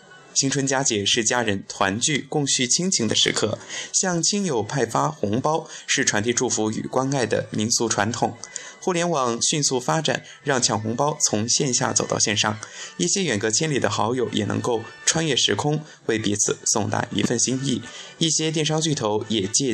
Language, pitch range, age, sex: Chinese, 110-150 Hz, 20-39, male